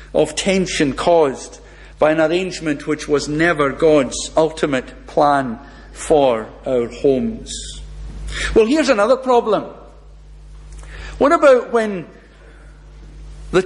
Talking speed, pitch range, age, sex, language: 100 wpm, 150-225 Hz, 60-79, male, English